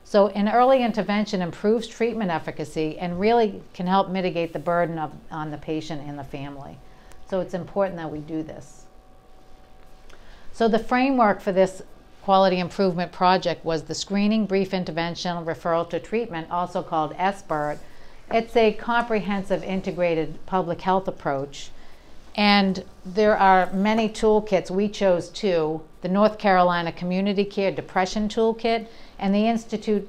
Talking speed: 145 wpm